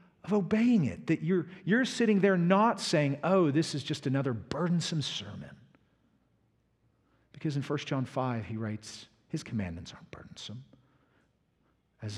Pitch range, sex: 125-180 Hz, male